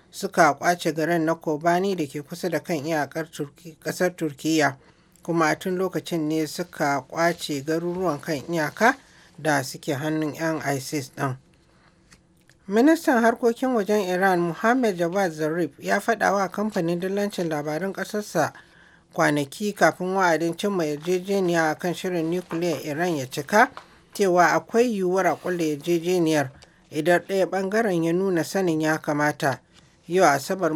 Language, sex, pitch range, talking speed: English, male, 155-185 Hz, 130 wpm